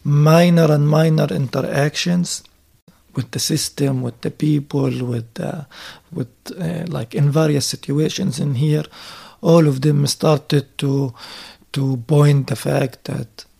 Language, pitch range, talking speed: German, 135-180 Hz, 130 wpm